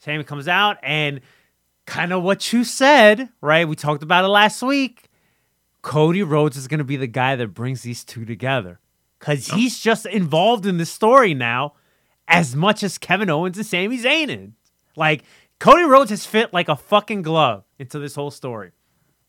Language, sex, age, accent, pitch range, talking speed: English, male, 30-49, American, 140-195 Hz, 180 wpm